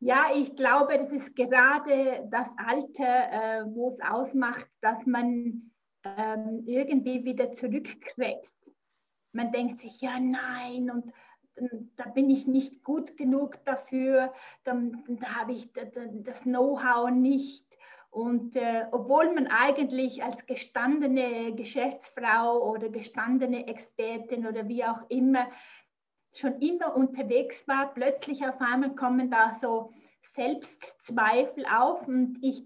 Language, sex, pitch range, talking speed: German, female, 240-270 Hz, 120 wpm